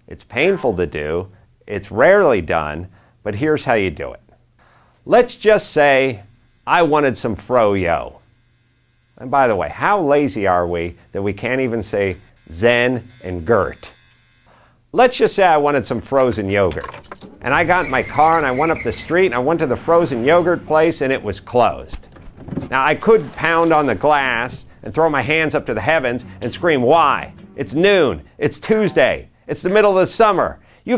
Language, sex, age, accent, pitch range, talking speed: English, male, 50-69, American, 120-170 Hz, 190 wpm